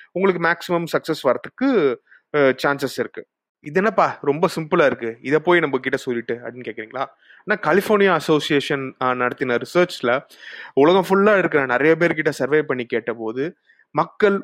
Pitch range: 135-185 Hz